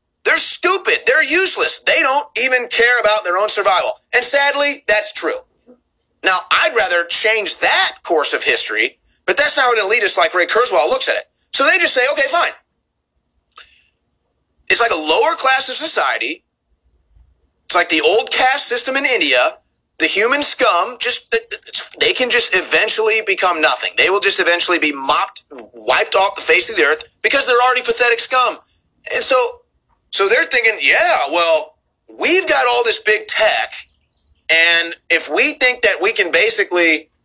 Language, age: English, 30-49